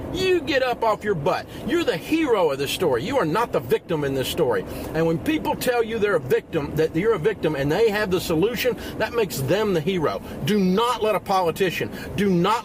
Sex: male